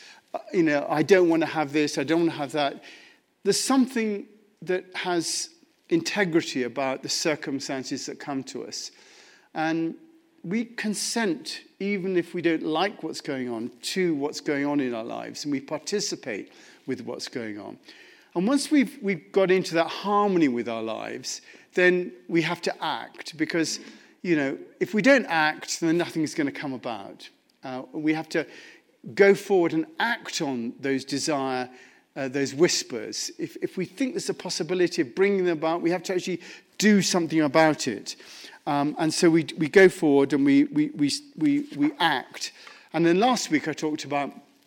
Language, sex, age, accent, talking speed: English, male, 50-69, British, 180 wpm